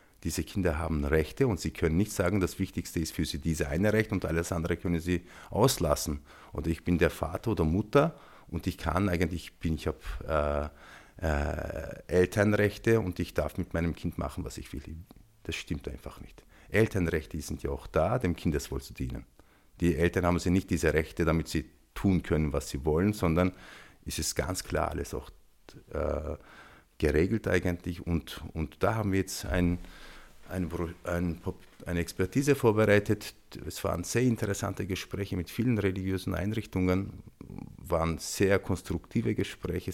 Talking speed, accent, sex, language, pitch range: 170 wpm, Austrian, male, German, 80-100 Hz